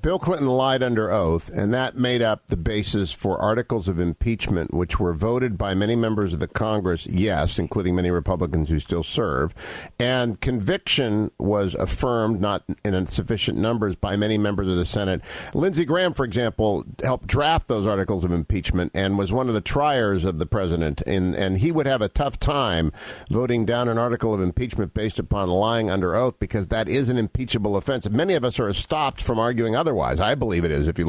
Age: 50-69